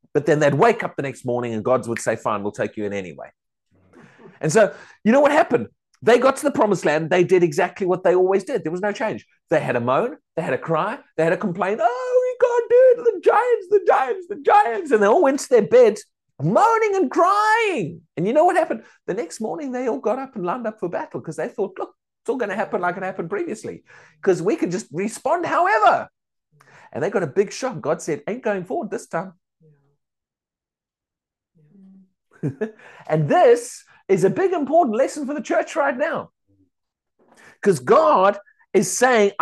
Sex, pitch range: male, 170-285 Hz